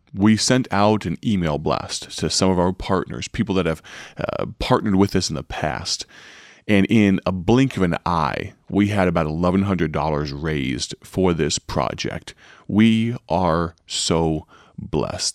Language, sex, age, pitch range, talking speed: English, male, 30-49, 85-100 Hz, 155 wpm